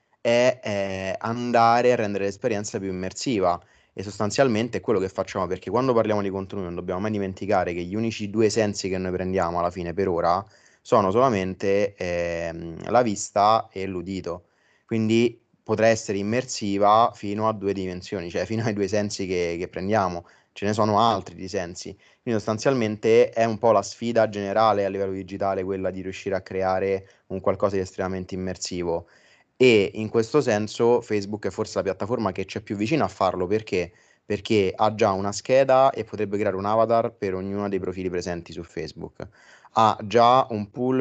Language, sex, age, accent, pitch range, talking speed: Italian, male, 20-39, native, 95-115 Hz, 175 wpm